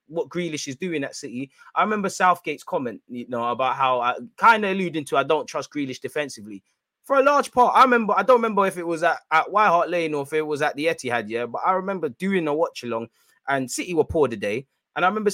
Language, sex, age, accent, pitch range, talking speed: English, male, 20-39, British, 140-185 Hz, 250 wpm